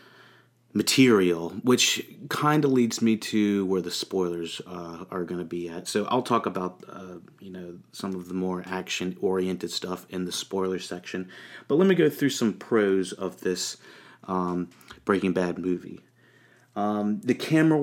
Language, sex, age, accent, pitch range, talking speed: English, male, 30-49, American, 90-105 Hz, 165 wpm